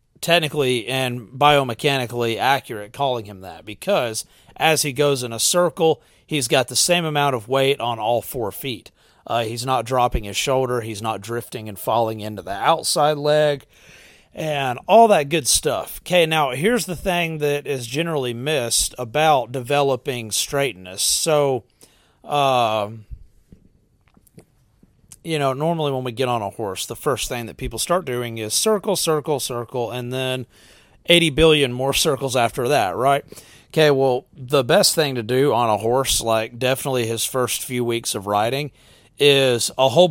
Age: 30-49